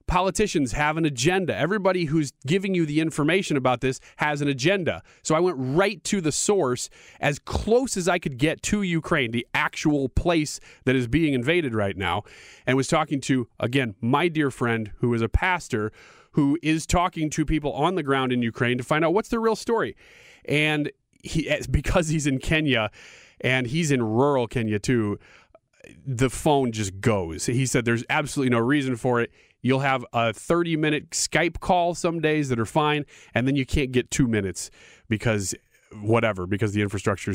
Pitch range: 125-165 Hz